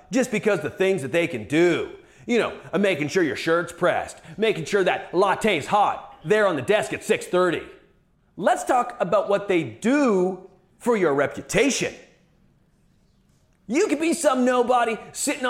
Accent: American